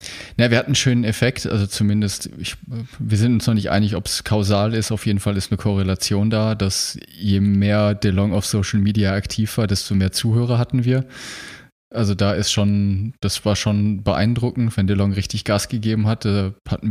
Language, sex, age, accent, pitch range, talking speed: German, male, 20-39, German, 95-110 Hz, 195 wpm